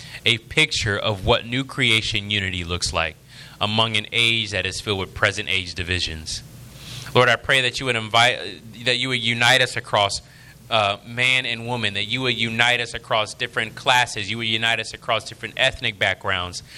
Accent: American